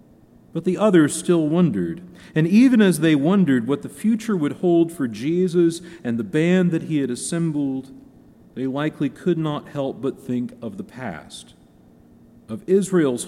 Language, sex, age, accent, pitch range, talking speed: English, male, 40-59, American, 130-190 Hz, 165 wpm